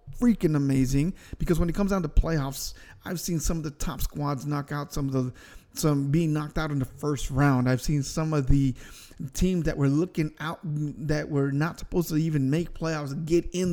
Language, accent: English, American